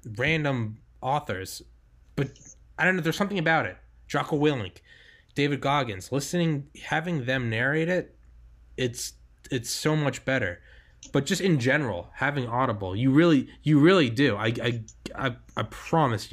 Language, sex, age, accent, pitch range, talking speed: English, male, 20-39, American, 105-135 Hz, 145 wpm